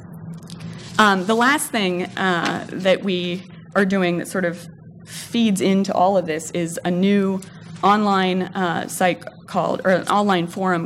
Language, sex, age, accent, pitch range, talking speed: English, female, 20-39, American, 170-200 Hz, 155 wpm